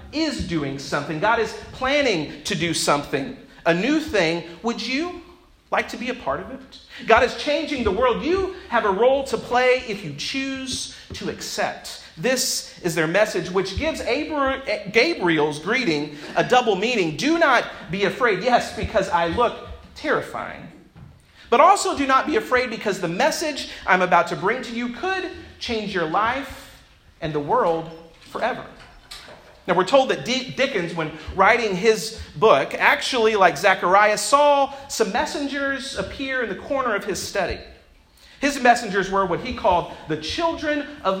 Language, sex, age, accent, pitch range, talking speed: English, male, 40-59, American, 180-275 Hz, 160 wpm